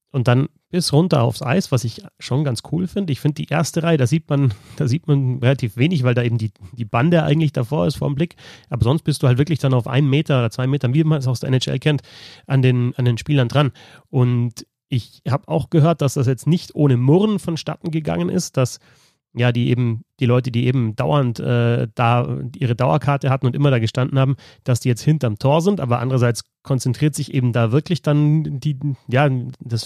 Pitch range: 120-145 Hz